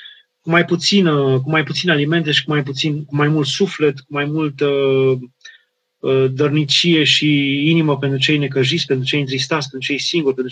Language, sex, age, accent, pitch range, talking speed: Romanian, male, 30-49, native, 135-160 Hz, 185 wpm